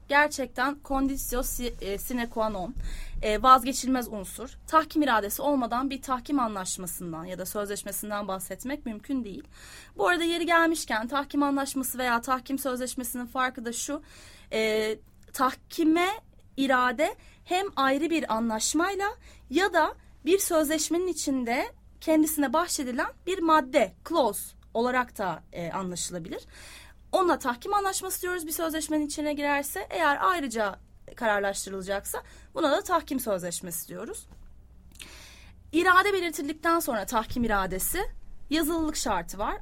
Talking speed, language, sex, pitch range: 110 wpm, English, female, 220-315 Hz